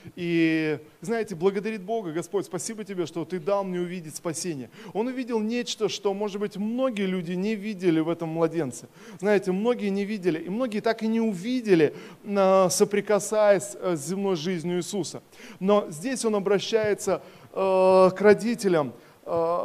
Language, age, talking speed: Russian, 20-39, 145 wpm